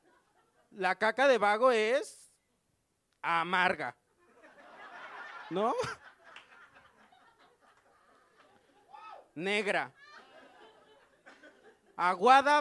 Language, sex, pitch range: Spanish, male, 170-215 Hz